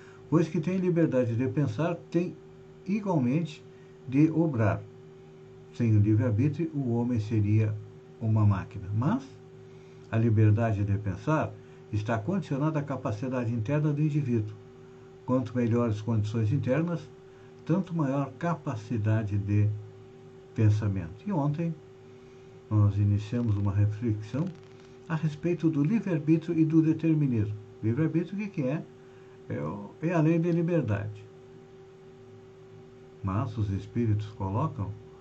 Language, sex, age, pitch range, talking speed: Portuguese, male, 60-79, 105-140 Hz, 110 wpm